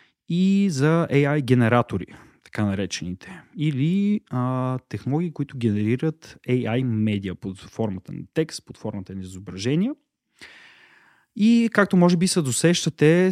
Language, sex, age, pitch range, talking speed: Bulgarian, male, 30-49, 115-160 Hz, 120 wpm